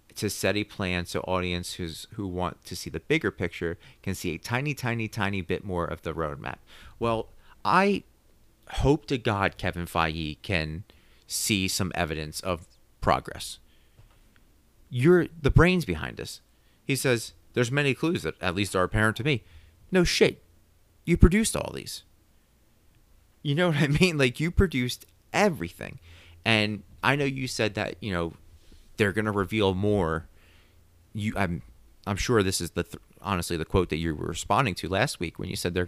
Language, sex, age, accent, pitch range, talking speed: English, male, 30-49, American, 85-110 Hz, 175 wpm